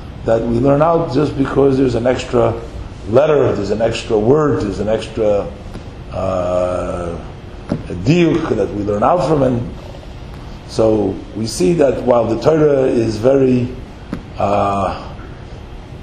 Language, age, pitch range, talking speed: English, 50-69, 115-150 Hz, 130 wpm